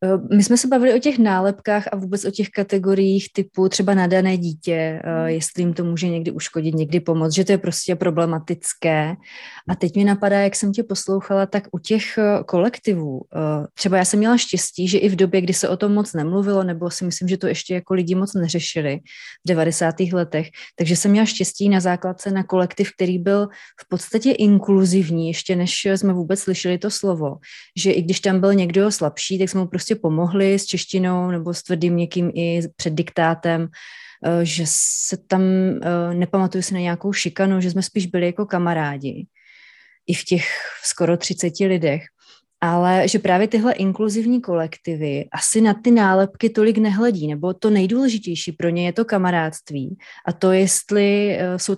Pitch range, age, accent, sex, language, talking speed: 170-200 Hz, 30-49, native, female, Czech, 180 wpm